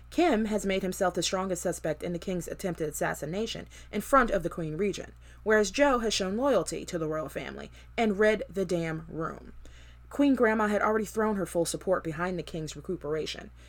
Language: English